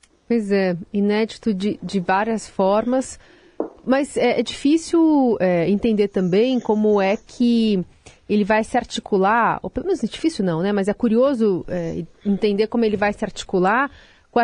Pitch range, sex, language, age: 190-255 Hz, female, Portuguese, 30-49